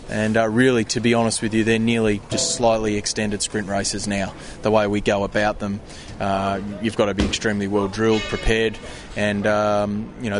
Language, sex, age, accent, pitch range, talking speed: English, male, 20-39, Australian, 105-115 Hz, 200 wpm